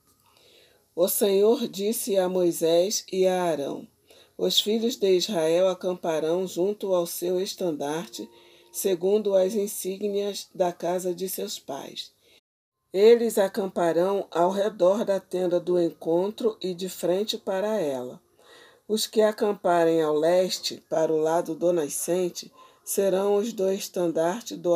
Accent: Brazilian